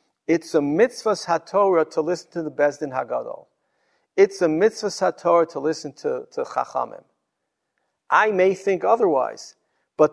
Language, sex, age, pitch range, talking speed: English, male, 50-69, 145-185 Hz, 150 wpm